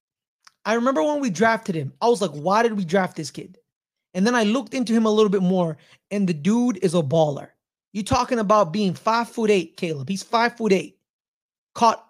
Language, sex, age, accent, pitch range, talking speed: English, male, 20-39, American, 195-250 Hz, 220 wpm